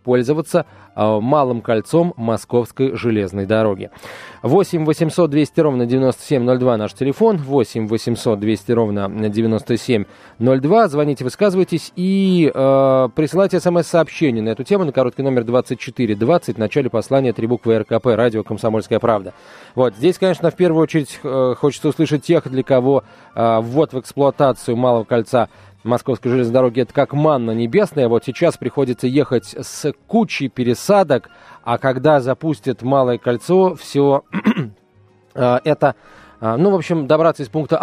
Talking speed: 140 wpm